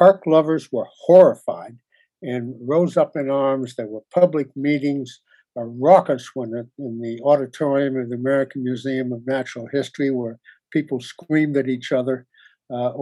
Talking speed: 150 wpm